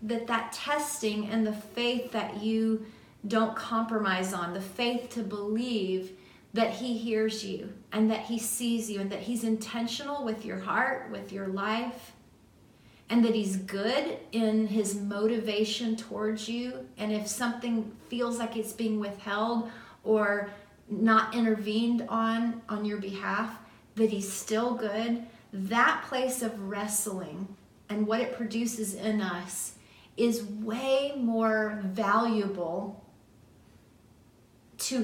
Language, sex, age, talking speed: English, female, 30-49, 130 wpm